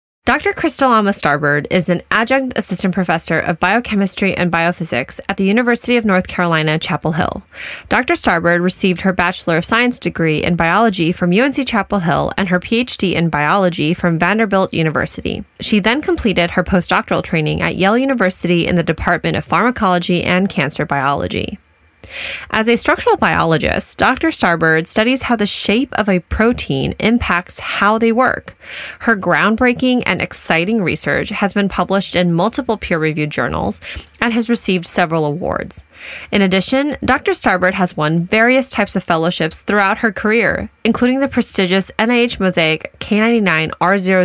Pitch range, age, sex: 170-225 Hz, 20-39, female